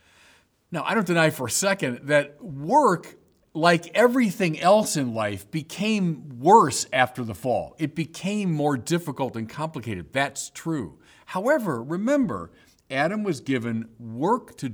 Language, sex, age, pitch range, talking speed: English, male, 50-69, 100-165 Hz, 140 wpm